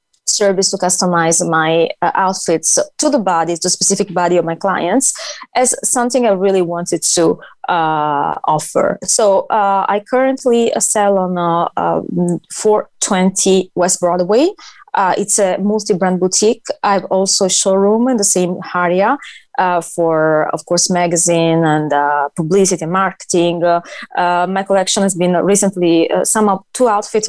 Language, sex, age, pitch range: English, female, 20-39, 170-205 Hz